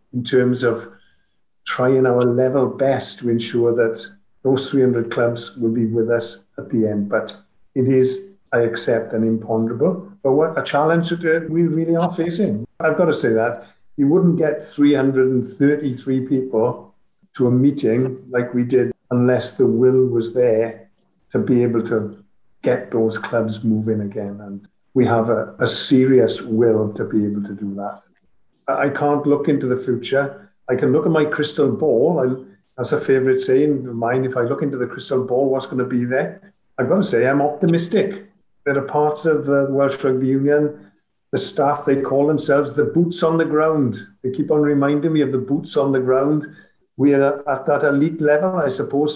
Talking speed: 185 wpm